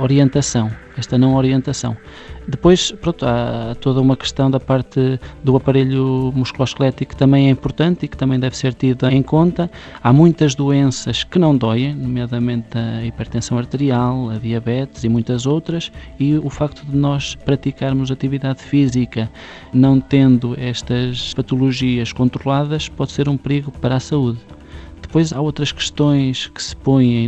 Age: 20-39